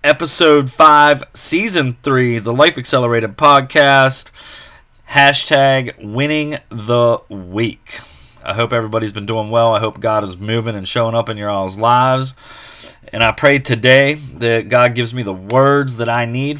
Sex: male